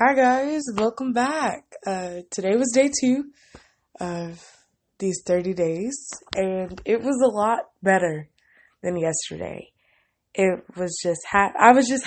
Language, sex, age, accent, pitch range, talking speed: English, female, 20-39, American, 175-220 Hz, 140 wpm